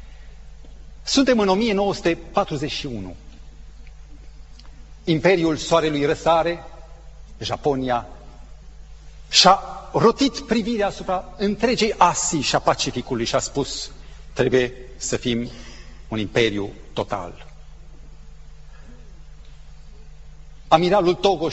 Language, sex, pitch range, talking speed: Romanian, male, 125-200 Hz, 70 wpm